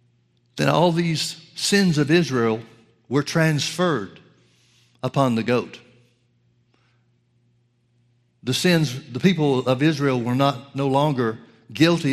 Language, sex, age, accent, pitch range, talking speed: English, male, 60-79, American, 115-135 Hz, 110 wpm